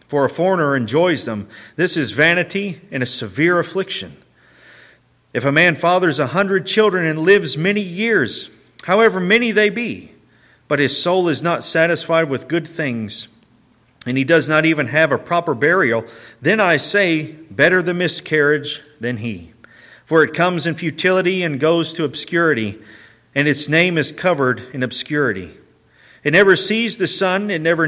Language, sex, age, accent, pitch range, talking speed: English, male, 40-59, American, 130-175 Hz, 165 wpm